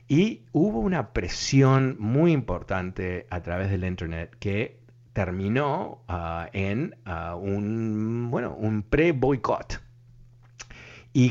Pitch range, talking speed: 95-135 Hz, 110 wpm